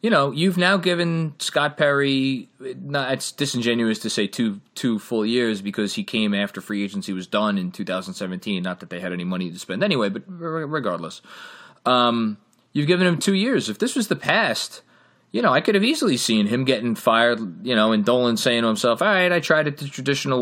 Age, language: 20-39, English